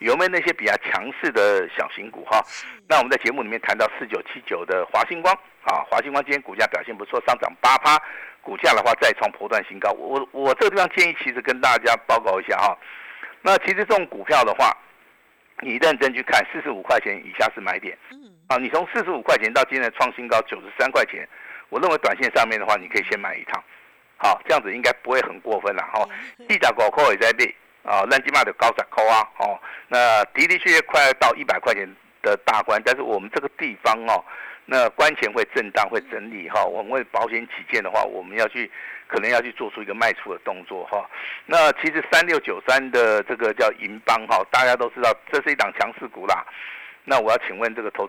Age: 50-69